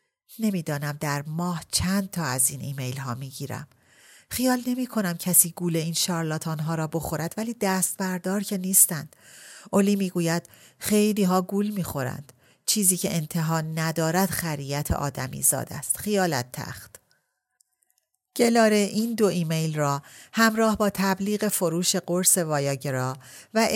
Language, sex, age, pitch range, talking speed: Persian, female, 40-59, 150-200 Hz, 135 wpm